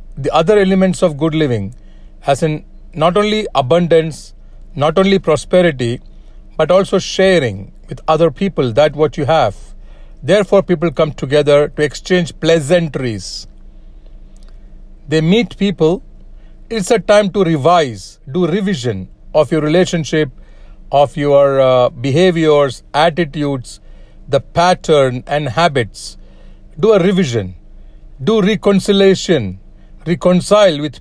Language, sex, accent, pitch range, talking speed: English, male, Indian, 140-180 Hz, 115 wpm